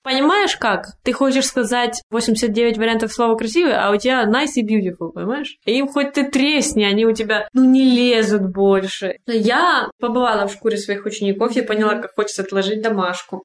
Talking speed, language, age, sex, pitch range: 175 wpm, Russian, 20-39, female, 200-240 Hz